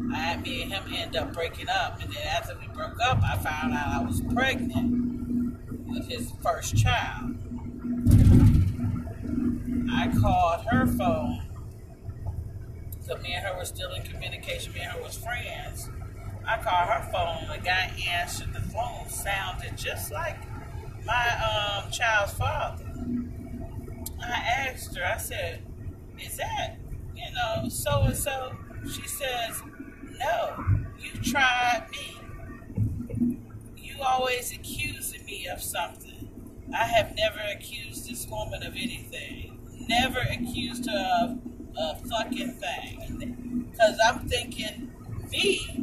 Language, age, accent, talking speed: English, 40-59, American, 130 wpm